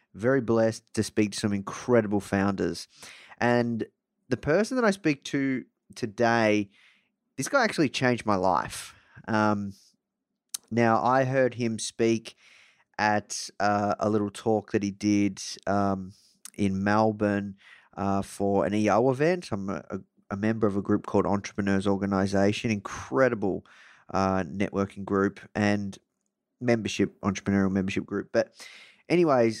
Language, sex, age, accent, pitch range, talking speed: English, male, 20-39, Australian, 100-130 Hz, 130 wpm